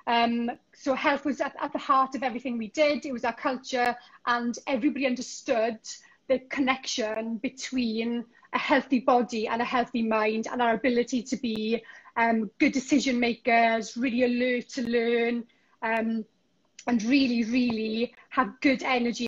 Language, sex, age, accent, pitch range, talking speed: English, female, 30-49, British, 235-270 Hz, 155 wpm